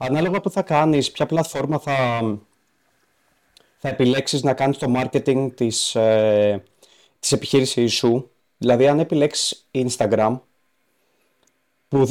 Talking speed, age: 120 wpm, 30-49